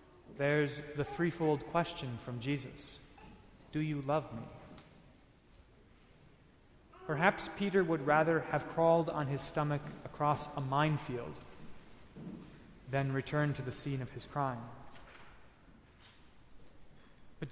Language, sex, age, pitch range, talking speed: English, male, 30-49, 140-180 Hz, 105 wpm